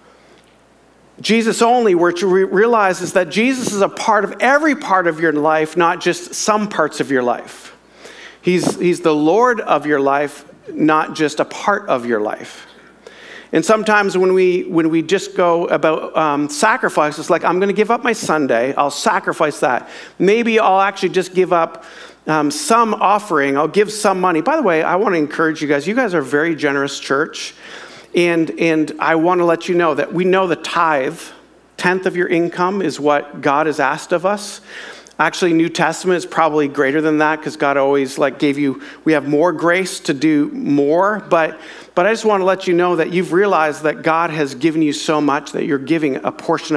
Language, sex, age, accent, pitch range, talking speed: English, male, 50-69, American, 155-190 Hz, 205 wpm